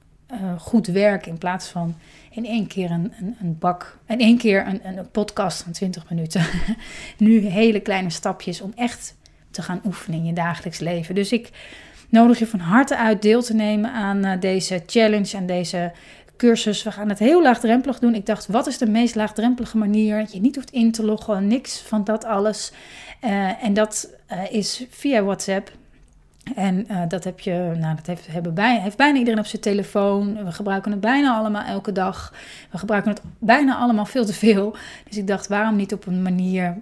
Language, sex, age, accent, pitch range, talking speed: Dutch, female, 30-49, Dutch, 175-220 Hz, 200 wpm